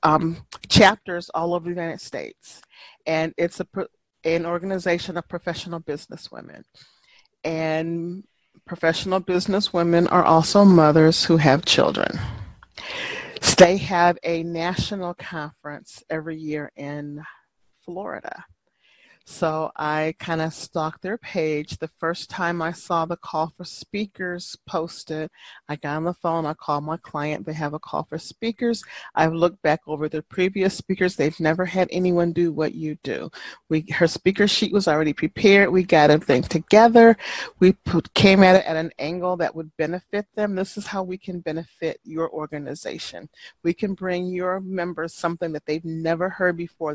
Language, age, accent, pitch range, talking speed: English, 40-59, American, 155-185 Hz, 155 wpm